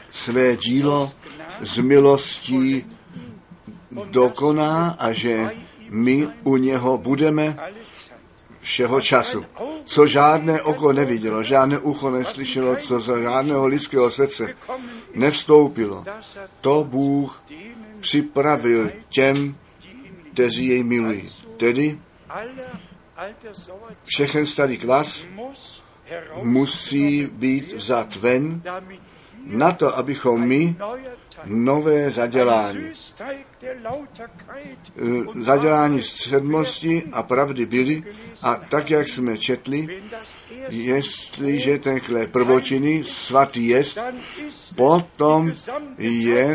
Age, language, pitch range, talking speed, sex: 50-69, Czech, 125-160 Hz, 85 wpm, male